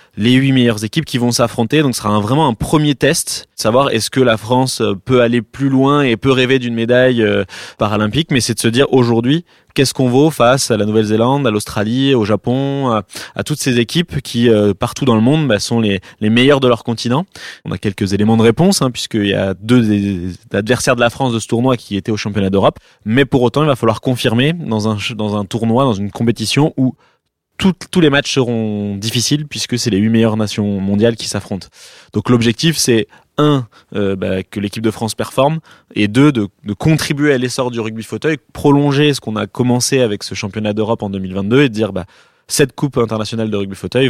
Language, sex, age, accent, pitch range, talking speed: French, male, 20-39, French, 105-135 Hz, 225 wpm